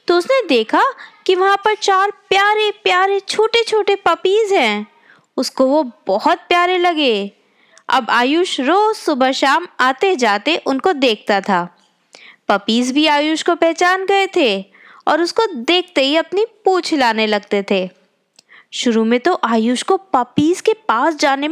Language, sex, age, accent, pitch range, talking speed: Hindi, female, 20-39, native, 240-385 Hz, 150 wpm